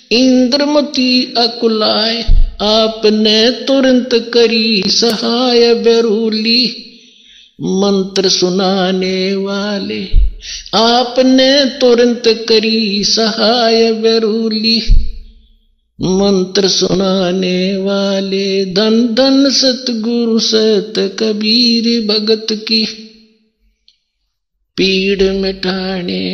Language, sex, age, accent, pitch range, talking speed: Hindi, male, 50-69, native, 195-235 Hz, 60 wpm